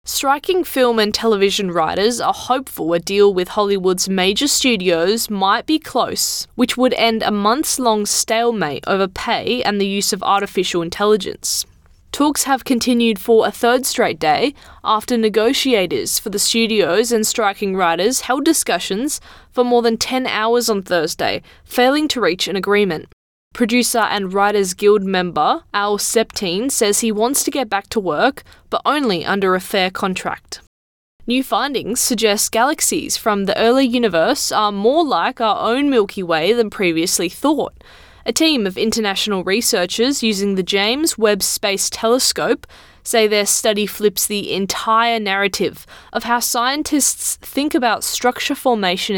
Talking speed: 150 wpm